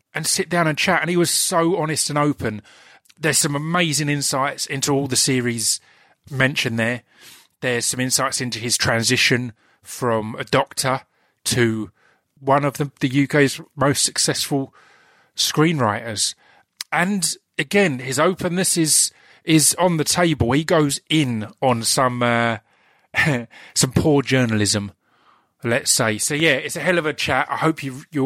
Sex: male